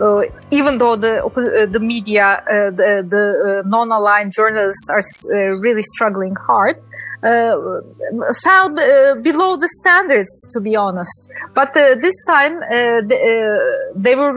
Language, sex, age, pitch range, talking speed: Greek, female, 30-49, 220-280 Hz, 140 wpm